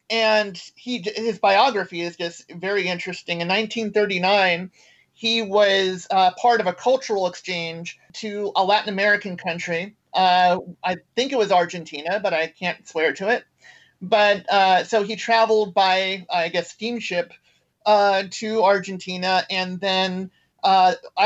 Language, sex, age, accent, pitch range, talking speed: Swedish, male, 40-59, American, 175-205 Hz, 140 wpm